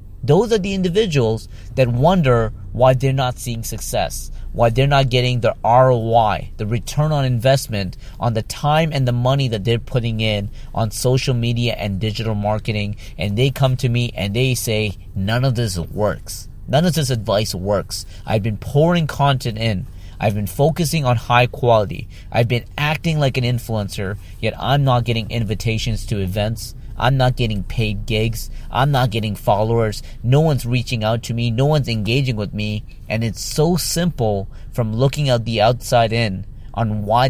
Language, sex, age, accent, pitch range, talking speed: English, male, 30-49, American, 105-130 Hz, 175 wpm